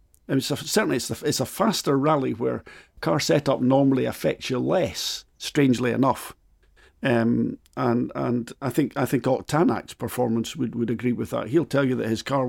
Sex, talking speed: male, 185 wpm